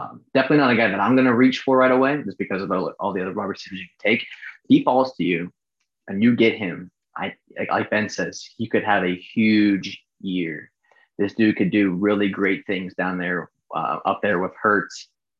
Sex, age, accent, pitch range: male, 20-39, American, 100-125 Hz